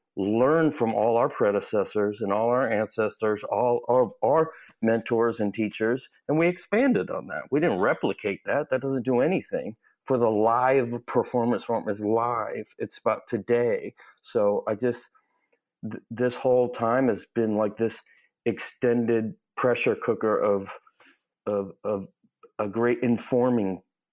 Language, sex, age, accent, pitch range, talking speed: English, male, 50-69, American, 110-145 Hz, 140 wpm